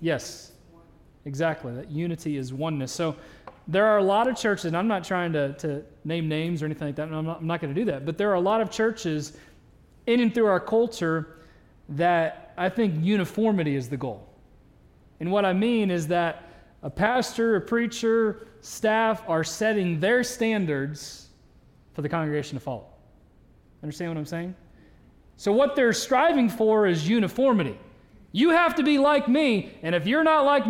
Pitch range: 155-230 Hz